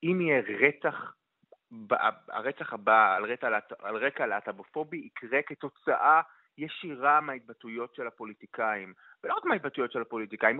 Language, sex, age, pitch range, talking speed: Hebrew, male, 30-49, 135-190 Hz, 120 wpm